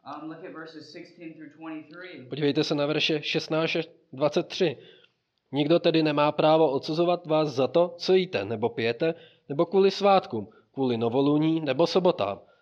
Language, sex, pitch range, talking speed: Czech, male, 130-165 Hz, 115 wpm